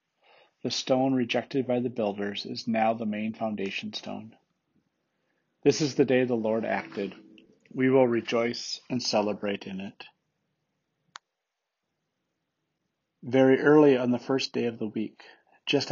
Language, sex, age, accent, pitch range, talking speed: English, male, 40-59, American, 105-130 Hz, 135 wpm